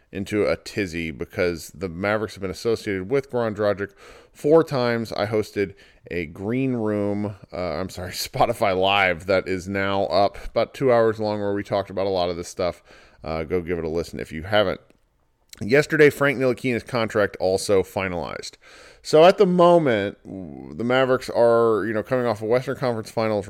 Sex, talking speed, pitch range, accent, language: male, 180 wpm, 100-125 Hz, American, English